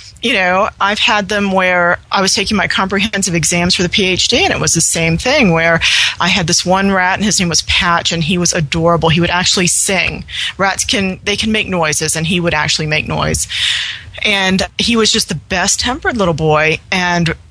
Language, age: English, 30-49